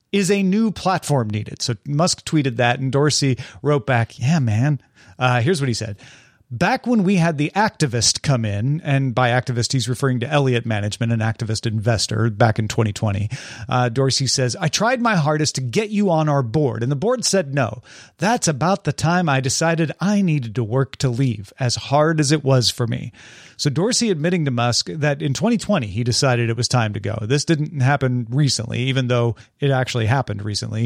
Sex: male